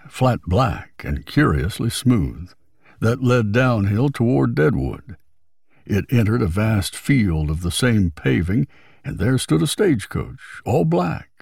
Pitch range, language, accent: 95-130 Hz, English, American